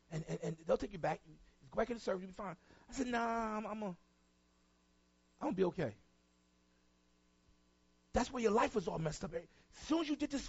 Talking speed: 235 wpm